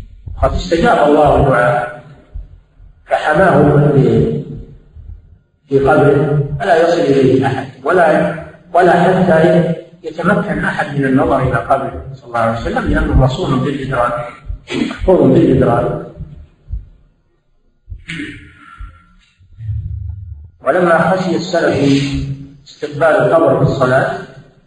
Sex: male